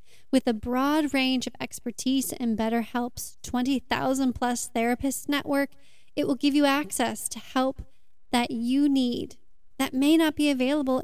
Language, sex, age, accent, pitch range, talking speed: English, female, 20-39, American, 240-280 Hz, 140 wpm